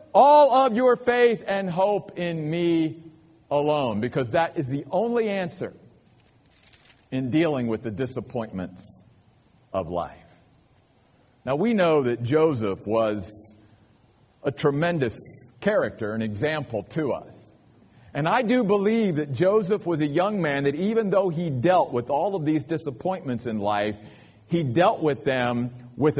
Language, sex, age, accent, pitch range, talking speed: English, male, 50-69, American, 115-180 Hz, 140 wpm